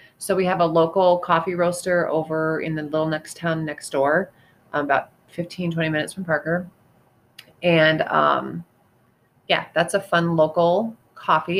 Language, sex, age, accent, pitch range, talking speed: English, female, 30-49, American, 150-175 Hz, 150 wpm